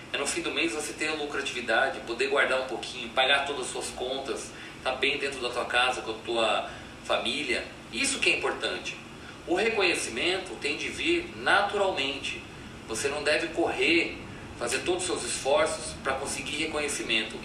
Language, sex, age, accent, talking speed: Portuguese, male, 40-59, Brazilian, 175 wpm